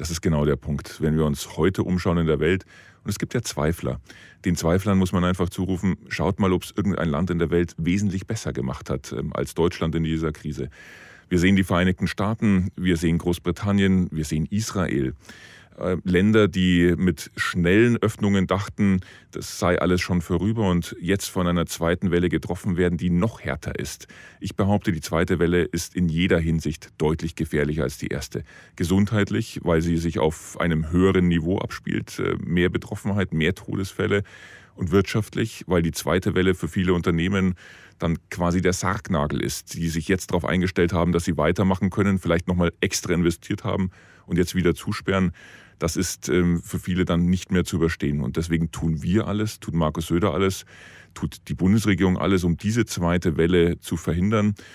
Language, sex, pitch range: German, male, 85-95 Hz